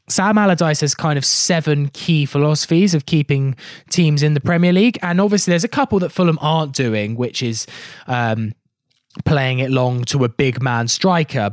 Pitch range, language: 125-170 Hz, English